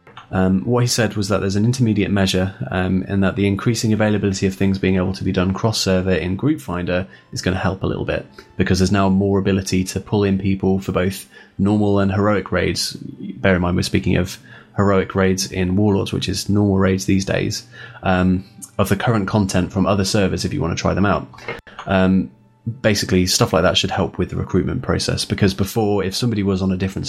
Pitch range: 95-110 Hz